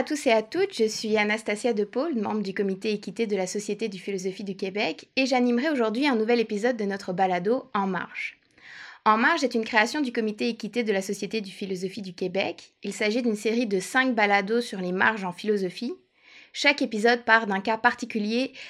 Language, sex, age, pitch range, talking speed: French, female, 20-39, 195-235 Hz, 210 wpm